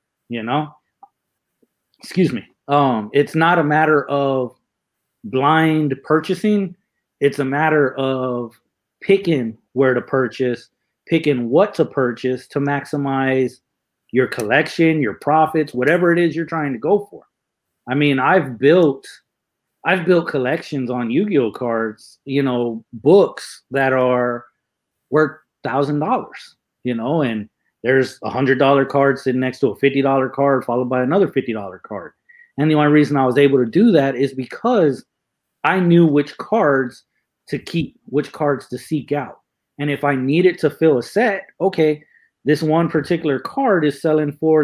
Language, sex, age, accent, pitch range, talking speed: English, male, 30-49, American, 130-155 Hz, 150 wpm